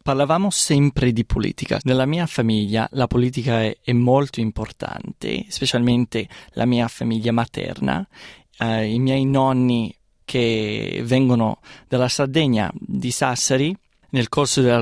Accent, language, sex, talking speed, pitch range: native, Italian, male, 125 wpm, 125-160 Hz